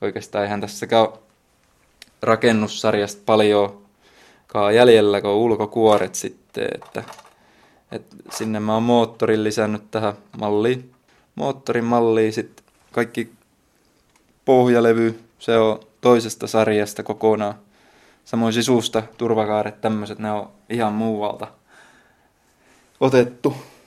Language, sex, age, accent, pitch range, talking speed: Finnish, male, 20-39, native, 105-115 Hz, 95 wpm